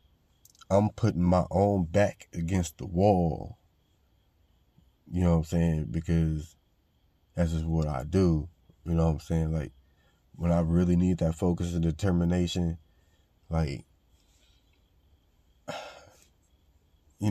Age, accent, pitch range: 30-49, American, 80-95 Hz